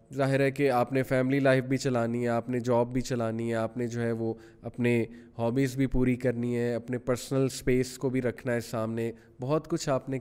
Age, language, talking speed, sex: 20-39, Urdu, 230 wpm, male